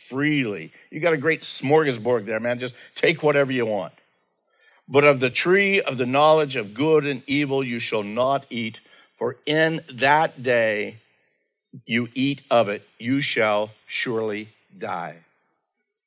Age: 50-69